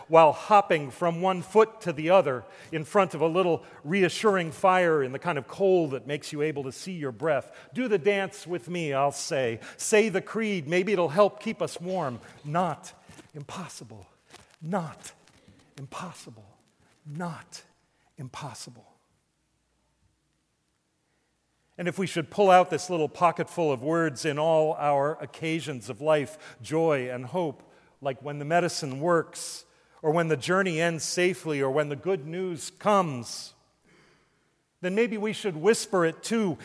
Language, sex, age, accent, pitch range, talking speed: English, male, 40-59, American, 150-195 Hz, 155 wpm